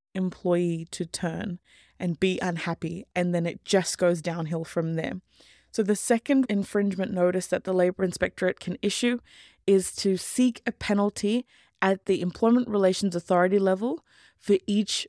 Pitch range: 180-220 Hz